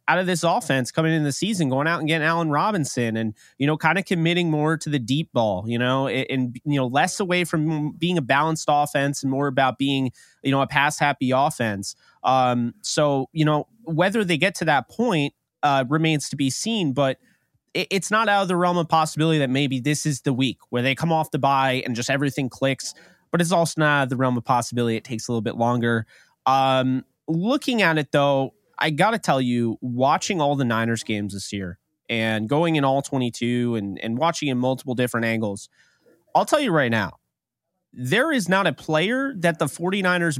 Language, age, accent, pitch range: English, 30-49, American, 130-165 Hz